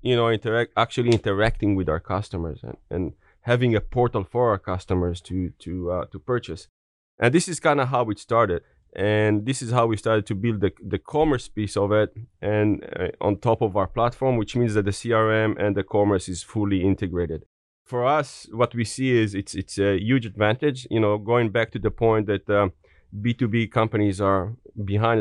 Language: English